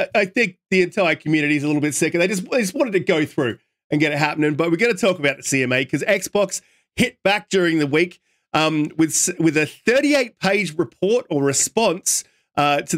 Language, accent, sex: English, Australian, male